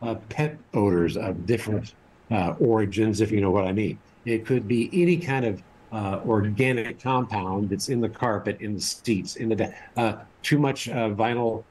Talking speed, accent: 190 wpm, American